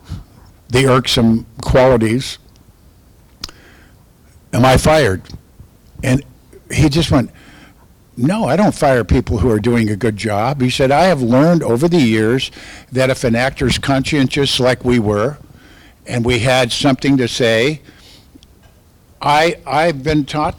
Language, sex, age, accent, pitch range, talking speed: English, male, 60-79, American, 115-140 Hz, 135 wpm